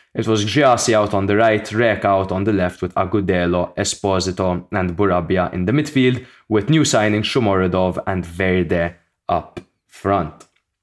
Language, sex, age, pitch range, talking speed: English, male, 20-39, 95-120 Hz, 155 wpm